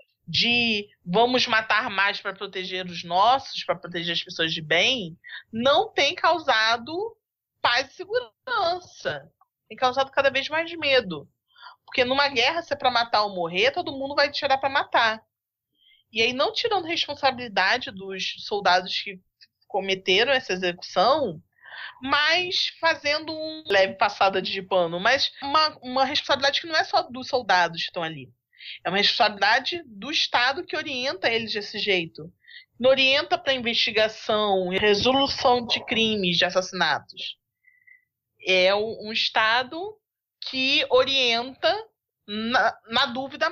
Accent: Brazilian